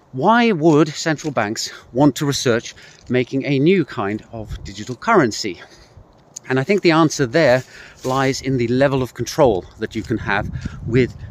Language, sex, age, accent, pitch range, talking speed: English, male, 40-59, British, 115-145 Hz, 165 wpm